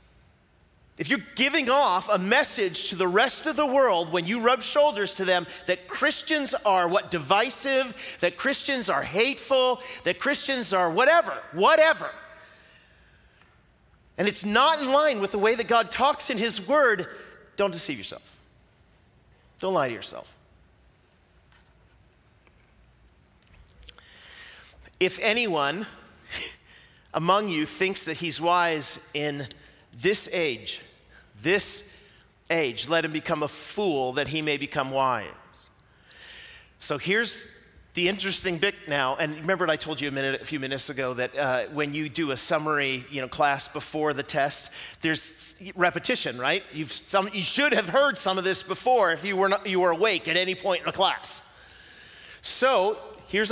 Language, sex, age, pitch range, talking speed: English, male, 40-59, 155-235 Hz, 150 wpm